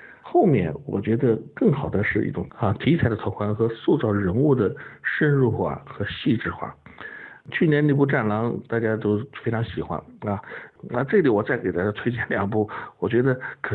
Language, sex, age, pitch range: Chinese, male, 60-79, 100-125 Hz